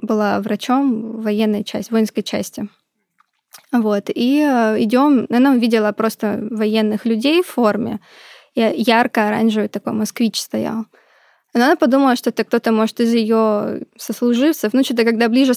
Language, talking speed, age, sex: Russian, 130 wpm, 20-39, female